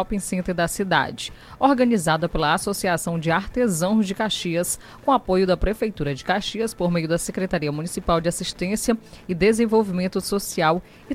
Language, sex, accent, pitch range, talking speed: Portuguese, female, Brazilian, 170-210 Hz, 150 wpm